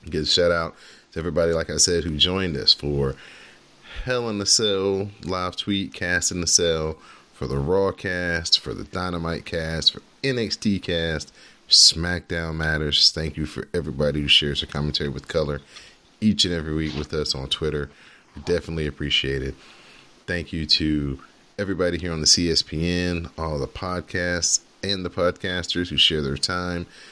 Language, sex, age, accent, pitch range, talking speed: English, male, 30-49, American, 75-90 Hz, 165 wpm